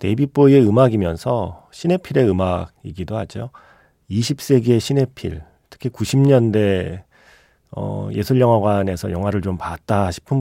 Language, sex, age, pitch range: Korean, male, 40-59, 90-130 Hz